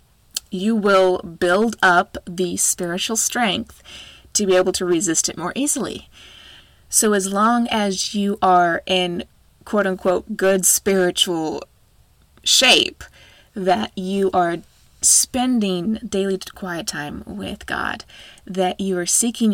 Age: 20-39